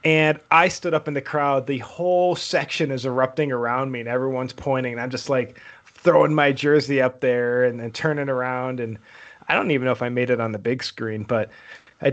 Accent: American